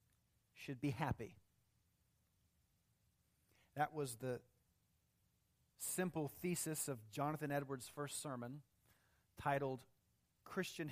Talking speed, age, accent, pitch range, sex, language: 80 wpm, 40-59, American, 110-160 Hz, male, English